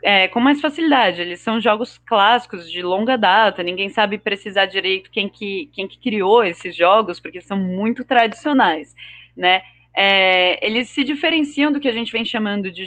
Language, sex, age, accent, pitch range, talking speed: Portuguese, female, 20-39, Brazilian, 185-255 Hz, 175 wpm